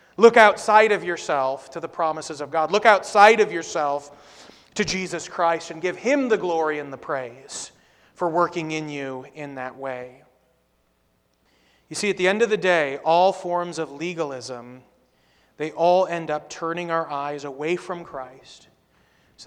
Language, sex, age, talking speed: English, male, 30-49, 165 wpm